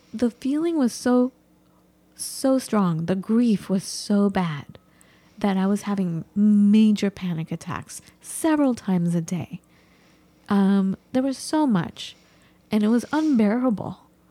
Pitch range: 190-235 Hz